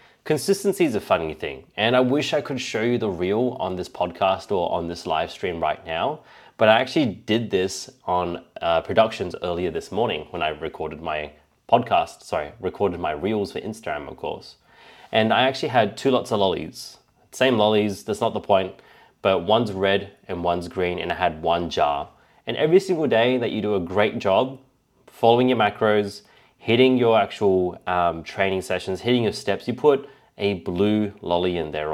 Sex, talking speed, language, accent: male, 190 wpm, English, Australian